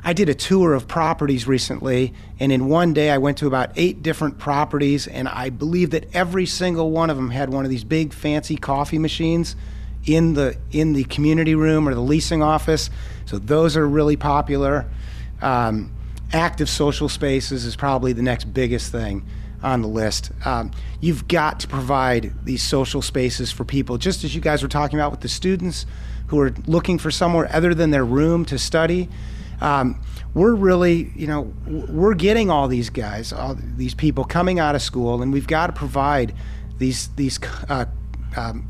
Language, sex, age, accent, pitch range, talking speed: English, male, 30-49, American, 125-160 Hz, 185 wpm